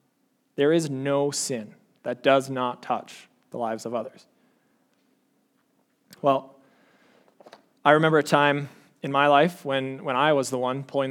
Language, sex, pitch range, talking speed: English, male, 130-155 Hz, 145 wpm